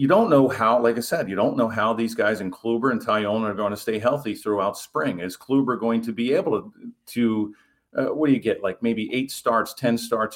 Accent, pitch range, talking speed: American, 95-120 Hz, 250 wpm